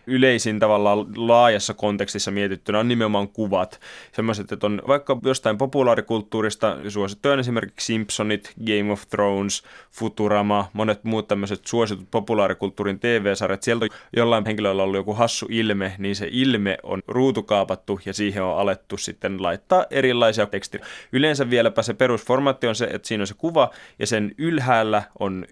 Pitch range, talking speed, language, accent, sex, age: 100-115 Hz, 150 wpm, Finnish, native, male, 20-39